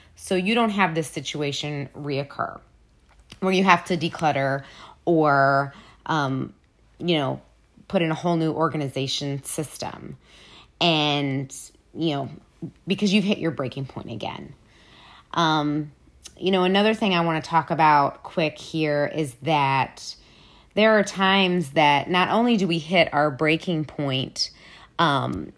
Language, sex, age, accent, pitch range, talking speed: English, female, 20-39, American, 150-195 Hz, 140 wpm